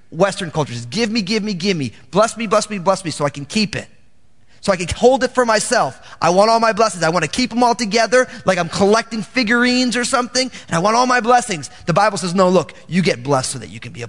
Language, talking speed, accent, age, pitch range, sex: English, 275 wpm, American, 30-49, 180-245 Hz, male